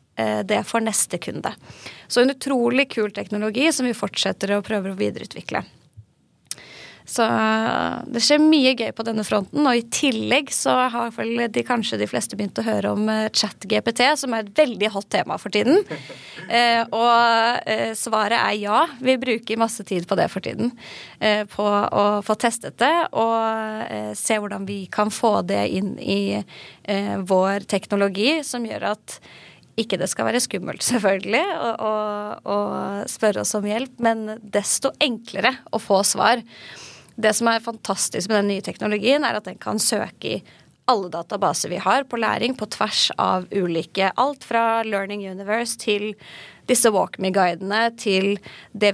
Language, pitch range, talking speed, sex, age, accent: English, 200-240 Hz, 165 wpm, female, 20-39, Swedish